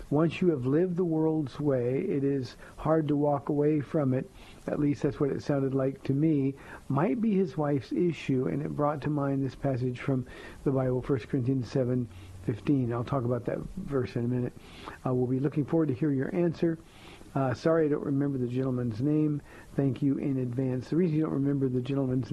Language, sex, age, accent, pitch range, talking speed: English, male, 50-69, American, 125-150 Hz, 210 wpm